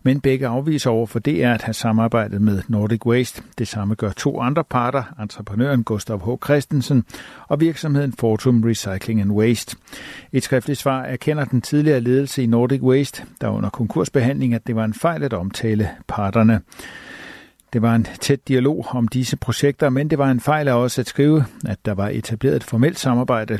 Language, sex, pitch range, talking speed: Danish, male, 115-140 Hz, 185 wpm